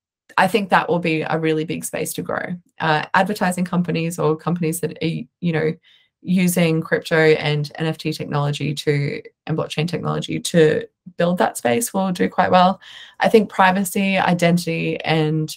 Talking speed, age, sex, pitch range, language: 160 wpm, 20-39, female, 155-185 Hz, English